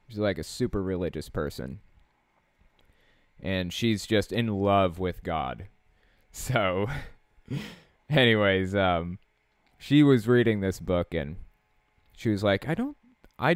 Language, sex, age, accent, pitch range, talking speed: English, male, 20-39, American, 90-115 Hz, 125 wpm